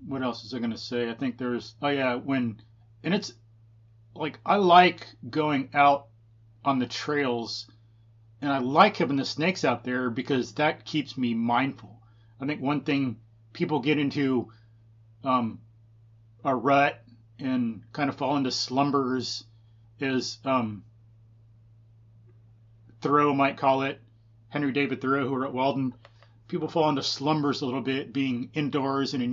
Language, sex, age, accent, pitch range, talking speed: English, male, 30-49, American, 115-140 Hz, 155 wpm